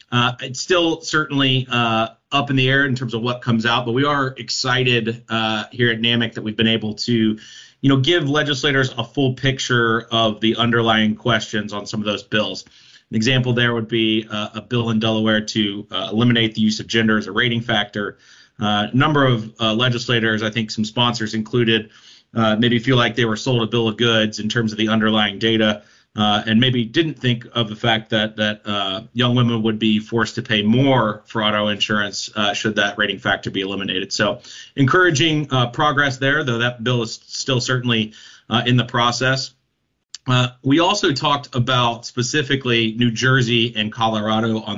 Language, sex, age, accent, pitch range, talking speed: English, male, 30-49, American, 110-125 Hz, 200 wpm